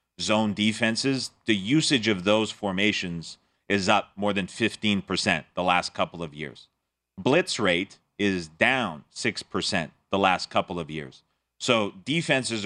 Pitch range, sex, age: 95-110 Hz, male, 30-49